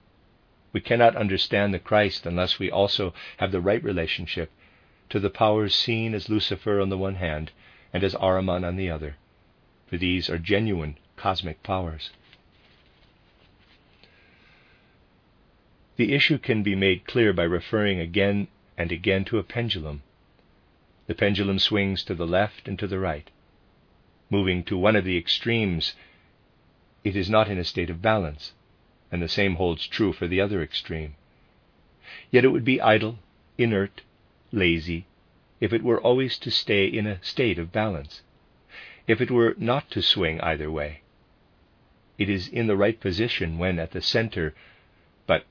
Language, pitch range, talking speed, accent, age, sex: English, 85-105 Hz, 155 wpm, American, 50-69, male